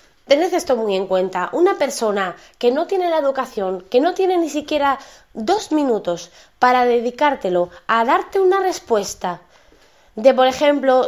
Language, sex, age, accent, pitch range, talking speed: Spanish, female, 20-39, Spanish, 225-290 Hz, 150 wpm